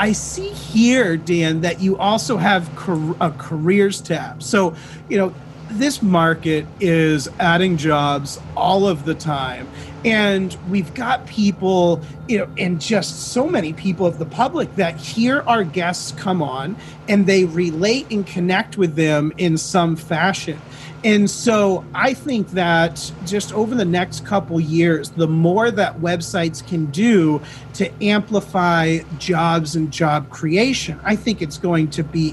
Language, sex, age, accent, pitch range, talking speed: English, male, 30-49, American, 160-200 Hz, 150 wpm